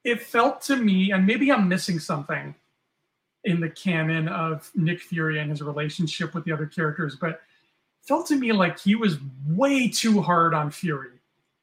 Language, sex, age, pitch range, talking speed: English, male, 30-49, 160-195 Hz, 180 wpm